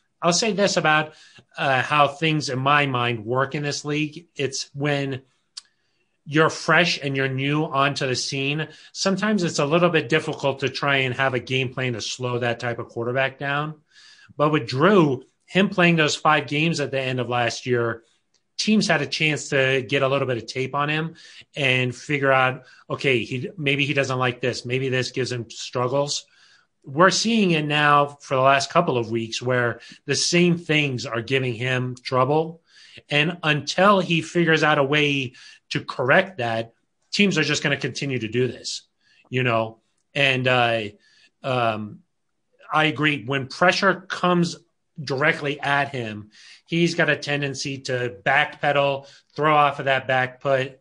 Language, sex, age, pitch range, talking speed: English, male, 30-49, 130-155 Hz, 175 wpm